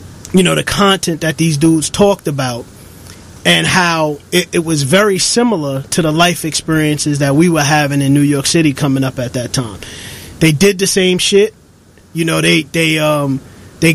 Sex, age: male, 30-49